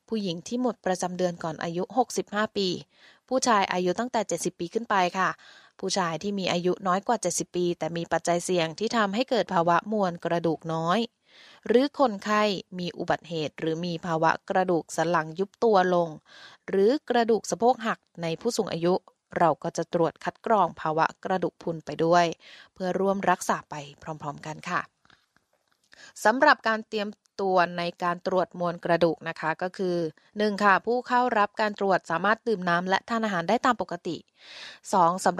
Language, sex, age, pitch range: Thai, female, 20-39, 170-215 Hz